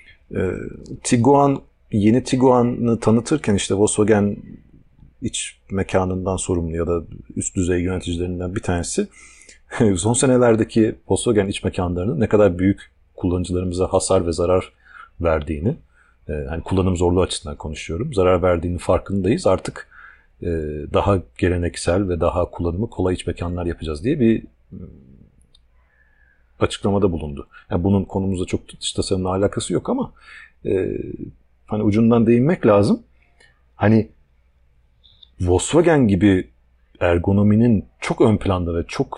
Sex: male